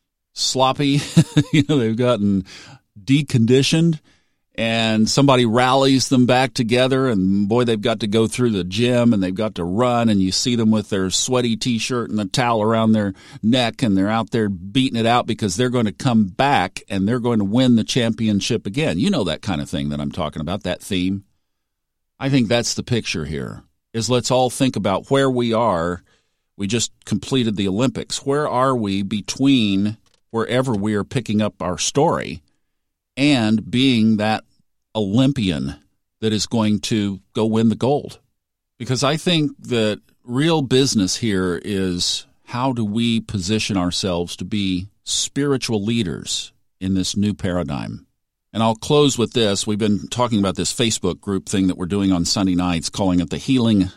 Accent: American